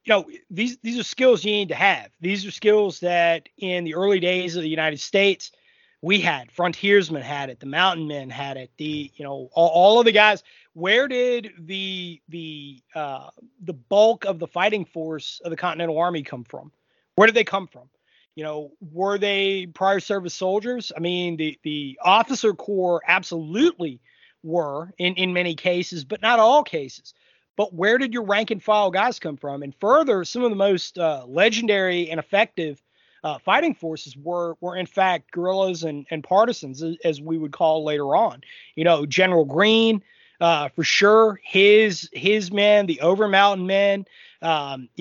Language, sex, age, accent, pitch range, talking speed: English, male, 30-49, American, 160-205 Hz, 180 wpm